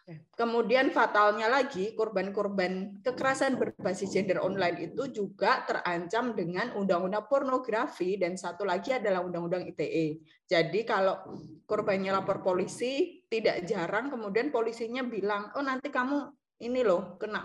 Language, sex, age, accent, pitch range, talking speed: English, female, 20-39, Indonesian, 180-235 Hz, 125 wpm